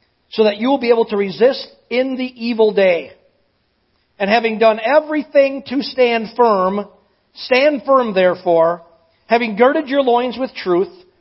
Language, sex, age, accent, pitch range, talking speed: English, male, 50-69, American, 175-245 Hz, 150 wpm